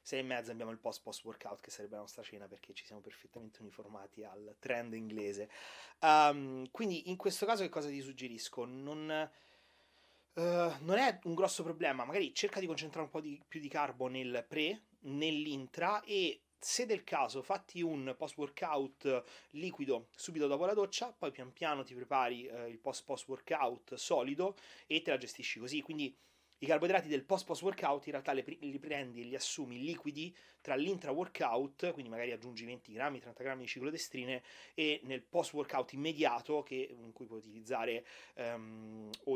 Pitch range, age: 125-170 Hz, 30-49